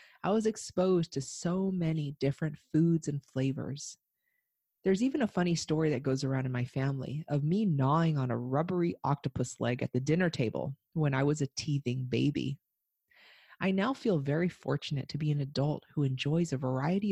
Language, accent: English, American